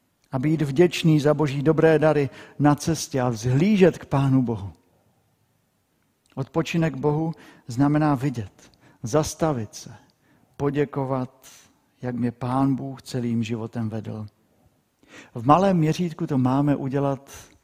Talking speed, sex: 115 wpm, male